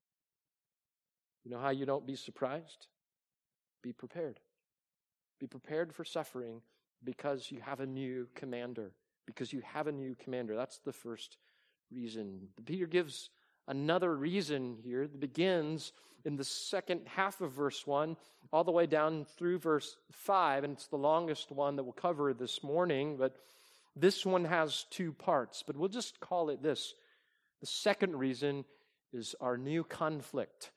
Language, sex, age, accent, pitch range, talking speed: English, male, 40-59, American, 140-190 Hz, 155 wpm